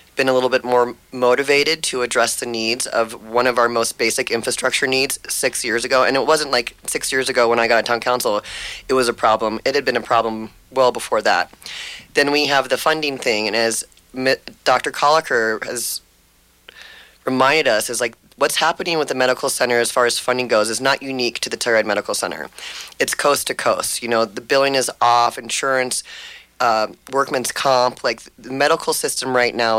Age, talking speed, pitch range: 30-49, 200 wpm, 115-130 Hz